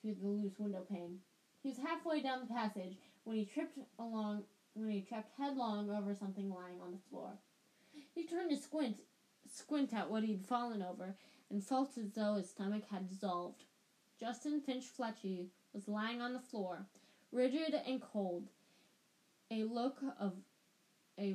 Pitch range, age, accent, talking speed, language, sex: 195-245 Hz, 10-29, American, 160 wpm, English, female